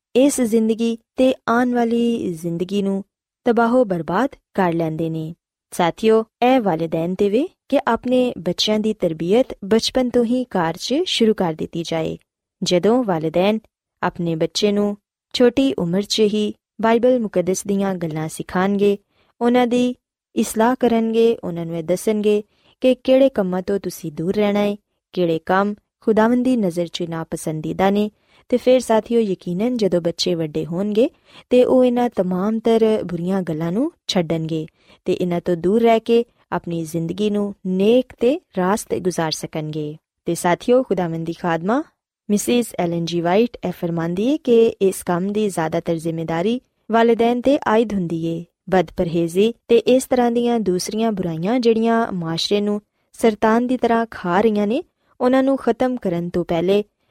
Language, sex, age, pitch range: Punjabi, female, 20-39, 175-235 Hz